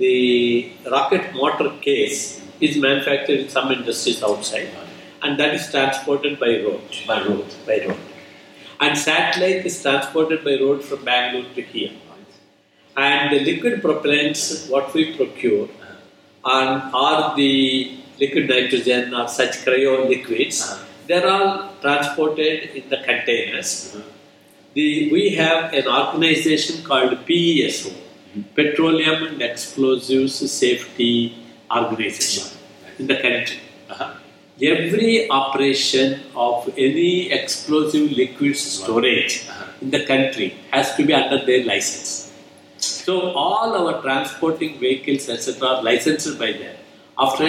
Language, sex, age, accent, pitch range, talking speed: English, male, 50-69, Indian, 130-155 Hz, 120 wpm